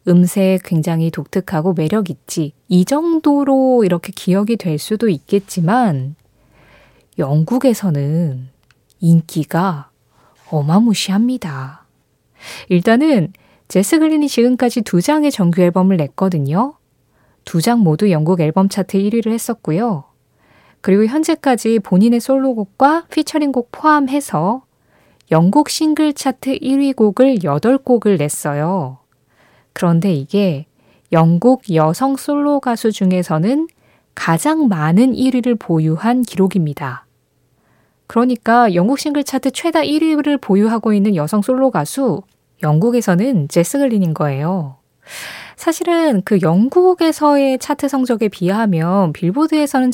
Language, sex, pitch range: Korean, female, 170-260 Hz